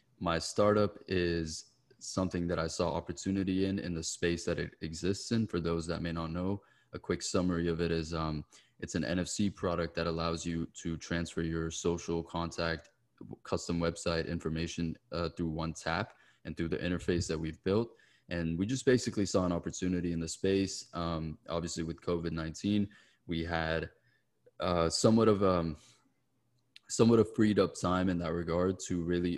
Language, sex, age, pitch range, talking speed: English, male, 20-39, 80-90 Hz, 175 wpm